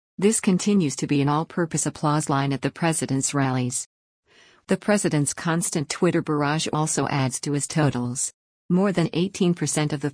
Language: English